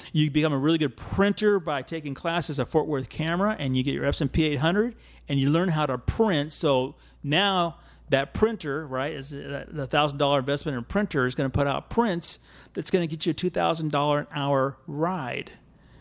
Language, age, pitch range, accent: English, 50-69, 130-160 Hz, American